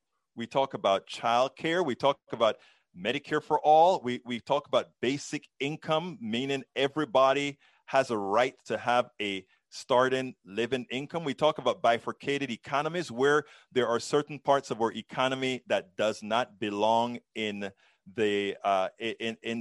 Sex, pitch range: male, 115-150 Hz